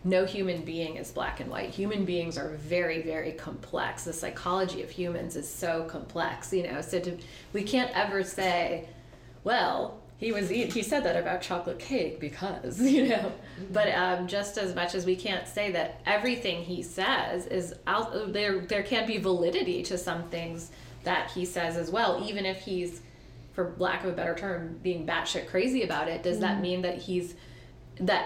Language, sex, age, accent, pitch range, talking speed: English, female, 20-39, American, 165-190 Hz, 185 wpm